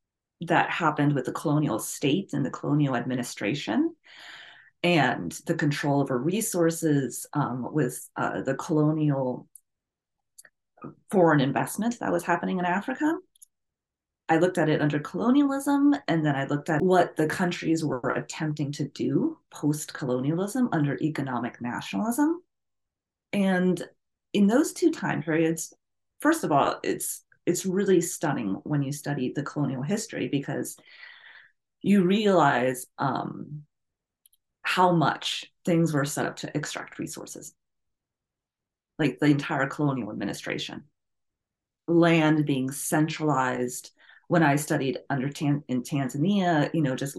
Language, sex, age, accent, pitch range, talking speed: English, female, 30-49, American, 135-175 Hz, 125 wpm